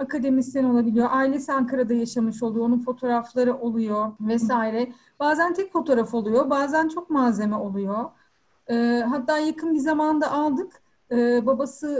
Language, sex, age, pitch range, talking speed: Turkish, female, 40-59, 225-275 Hz, 130 wpm